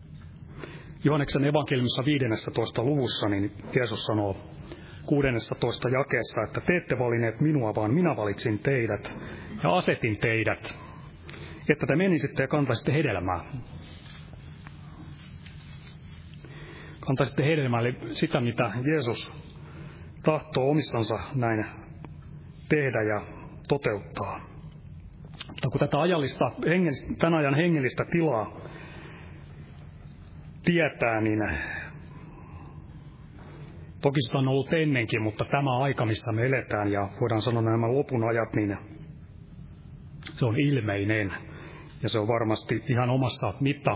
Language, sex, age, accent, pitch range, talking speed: Finnish, male, 30-49, native, 110-145 Hz, 105 wpm